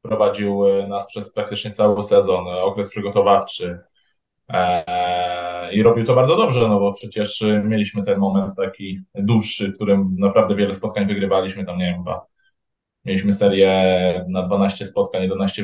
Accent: native